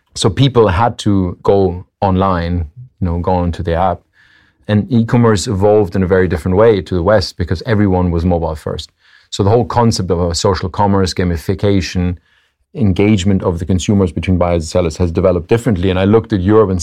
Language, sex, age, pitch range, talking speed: English, male, 40-59, 90-105 Hz, 195 wpm